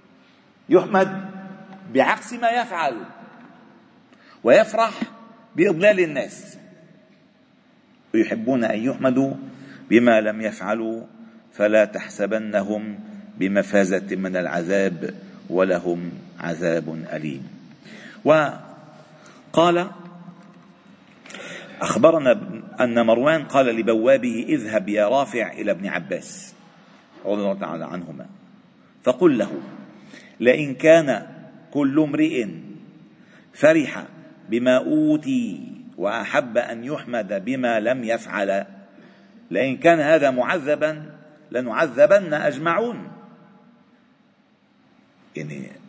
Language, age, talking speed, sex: Arabic, 50-69, 75 wpm, male